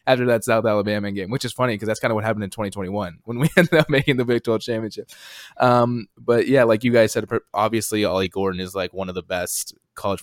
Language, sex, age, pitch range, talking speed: English, male, 20-39, 105-120 Hz, 245 wpm